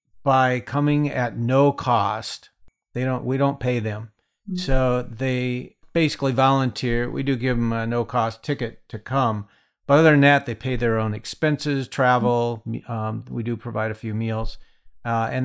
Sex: male